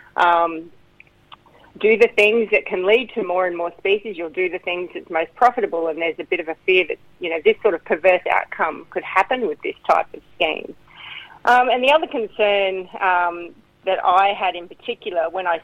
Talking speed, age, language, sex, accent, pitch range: 205 wpm, 40-59, English, female, Australian, 175-215 Hz